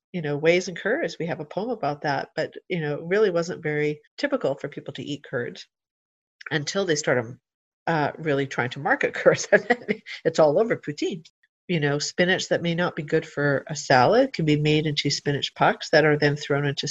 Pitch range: 150-185 Hz